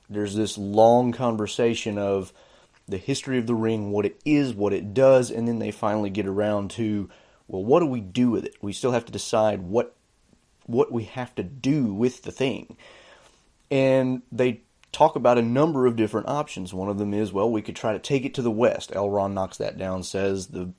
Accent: American